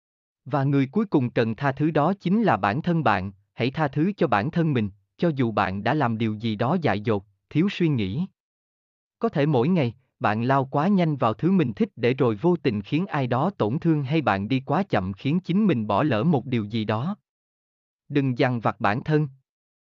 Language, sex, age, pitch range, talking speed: Vietnamese, male, 20-39, 110-165 Hz, 220 wpm